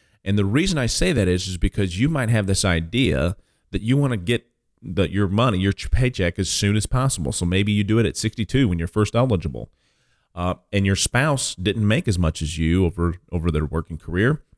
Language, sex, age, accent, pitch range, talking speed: English, male, 40-59, American, 90-125 Hz, 225 wpm